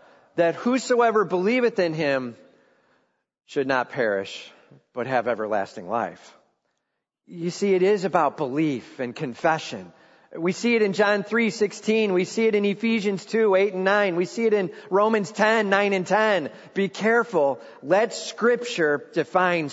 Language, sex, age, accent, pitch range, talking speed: English, male, 40-59, American, 195-255 Hz, 150 wpm